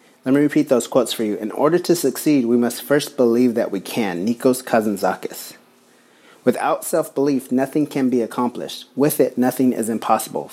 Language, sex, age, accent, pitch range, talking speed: English, male, 30-49, American, 115-135 Hz, 175 wpm